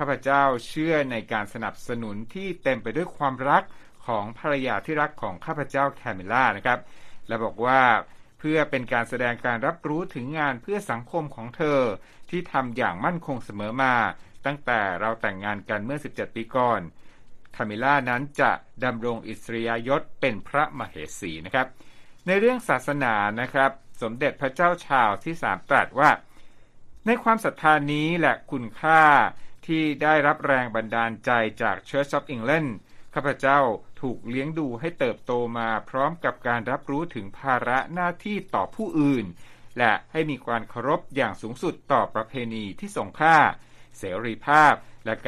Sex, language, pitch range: male, Thai, 115-150 Hz